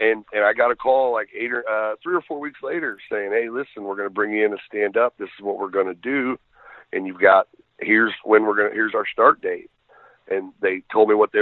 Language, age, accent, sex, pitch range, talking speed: English, 40-59, American, male, 105-155 Hz, 275 wpm